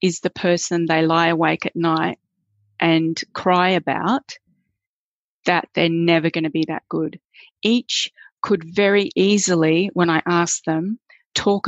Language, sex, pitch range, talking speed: English, female, 165-190 Hz, 145 wpm